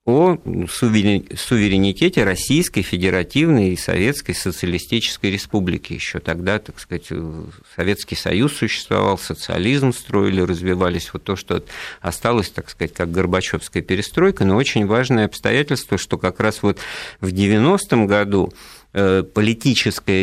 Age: 50-69